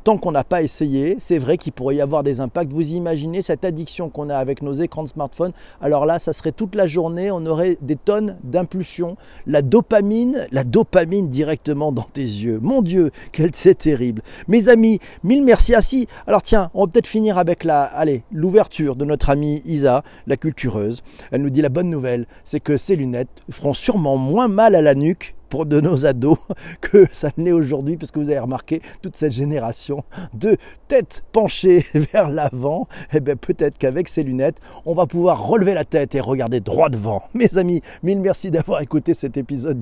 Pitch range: 140-180 Hz